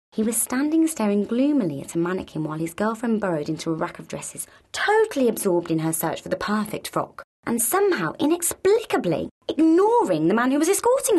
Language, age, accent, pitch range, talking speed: English, 20-39, British, 165-225 Hz, 190 wpm